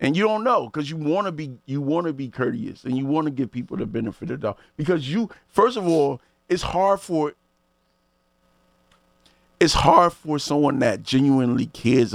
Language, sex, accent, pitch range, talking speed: English, male, American, 95-145 Hz, 200 wpm